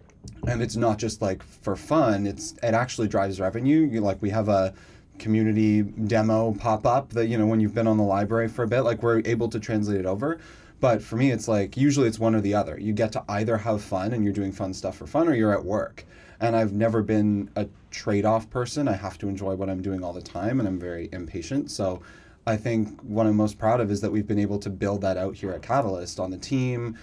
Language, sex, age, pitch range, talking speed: English, male, 30-49, 100-115 Hz, 245 wpm